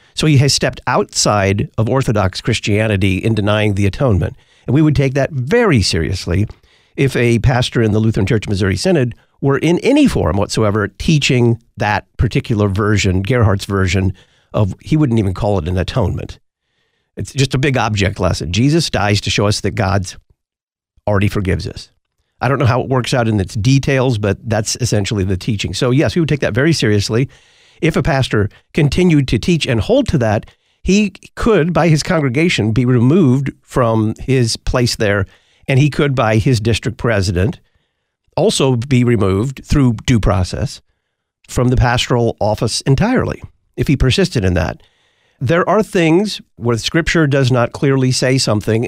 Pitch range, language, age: 105-140 Hz, English, 50-69